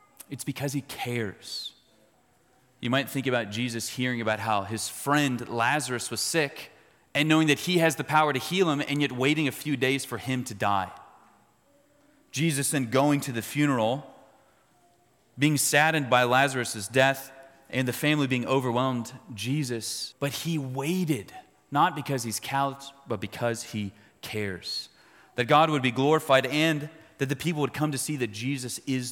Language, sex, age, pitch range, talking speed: English, male, 30-49, 115-150 Hz, 165 wpm